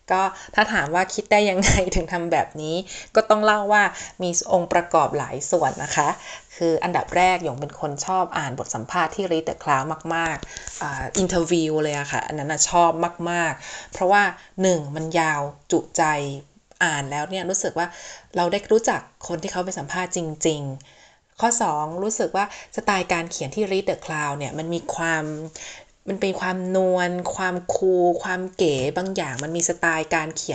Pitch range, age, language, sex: 160-200 Hz, 20-39, Thai, female